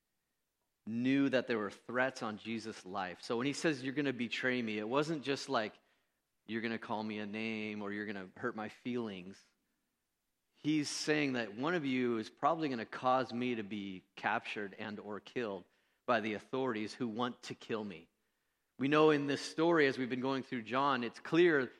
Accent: American